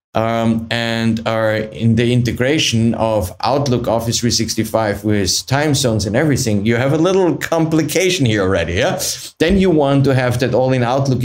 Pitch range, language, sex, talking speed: 110-140 Hz, English, male, 170 wpm